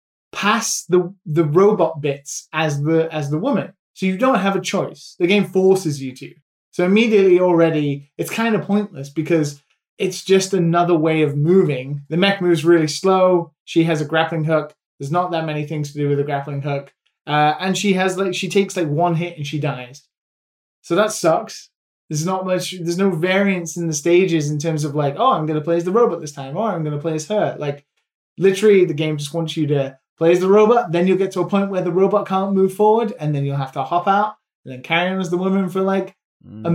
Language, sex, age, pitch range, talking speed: English, male, 20-39, 150-195 Hz, 230 wpm